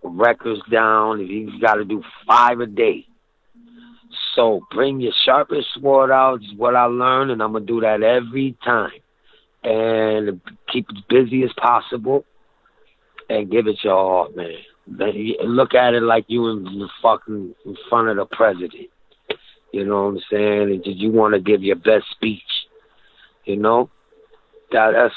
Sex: male